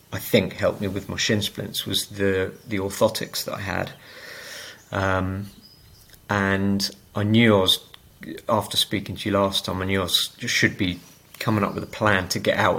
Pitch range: 95-110 Hz